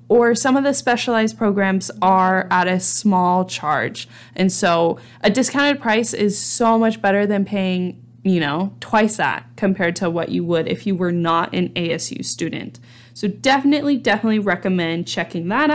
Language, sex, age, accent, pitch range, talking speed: English, female, 20-39, American, 175-225 Hz, 170 wpm